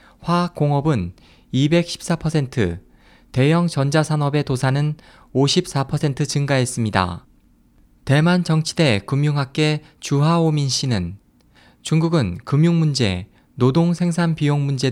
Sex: male